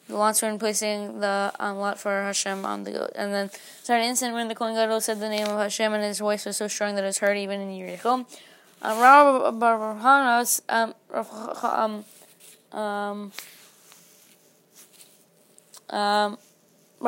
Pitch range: 205-230 Hz